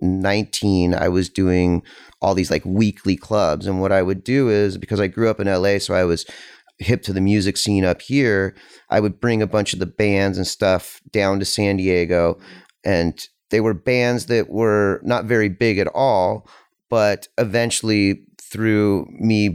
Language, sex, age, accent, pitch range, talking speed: English, male, 30-49, American, 95-110 Hz, 185 wpm